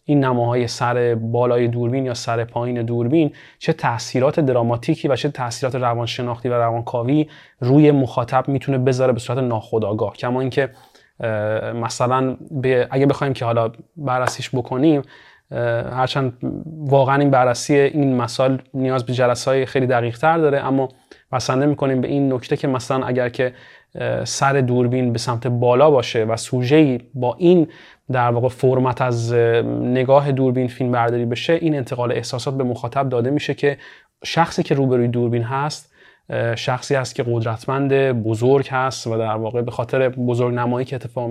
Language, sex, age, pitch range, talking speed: Persian, male, 30-49, 120-140 Hz, 155 wpm